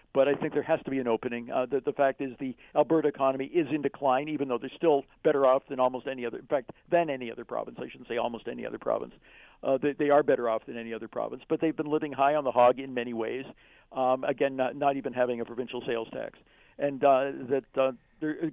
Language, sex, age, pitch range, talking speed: English, male, 50-69, 120-145 Hz, 255 wpm